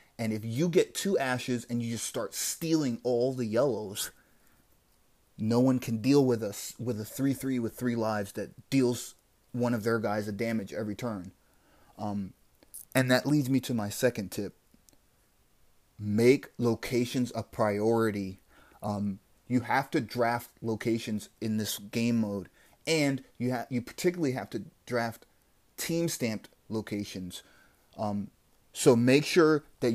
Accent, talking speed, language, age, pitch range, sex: American, 150 wpm, English, 30-49, 110-135 Hz, male